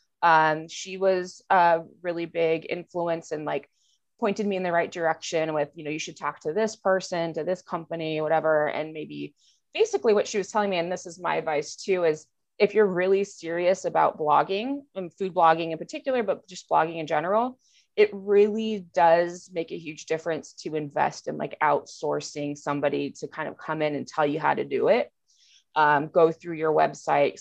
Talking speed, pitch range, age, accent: 195 wpm, 145-180 Hz, 20-39, American